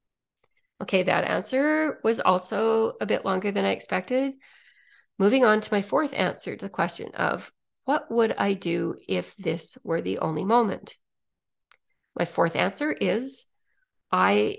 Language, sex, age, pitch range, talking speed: English, female, 40-59, 175-225 Hz, 150 wpm